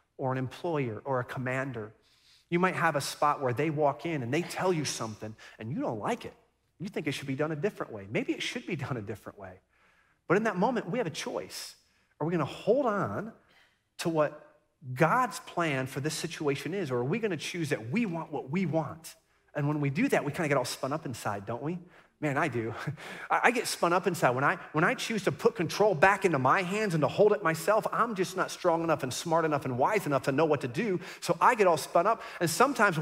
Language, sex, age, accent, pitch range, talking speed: English, male, 30-49, American, 145-190 Hz, 250 wpm